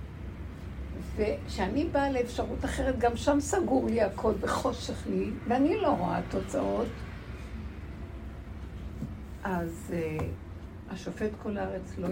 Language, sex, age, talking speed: Hebrew, female, 60-79, 105 wpm